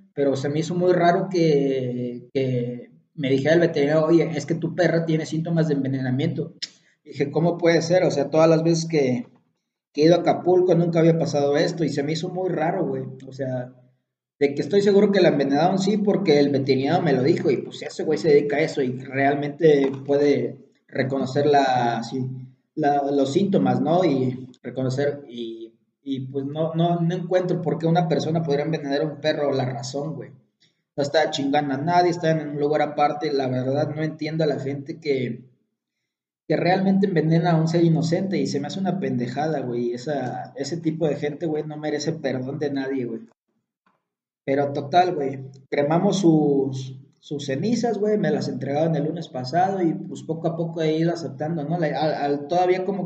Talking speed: 190 wpm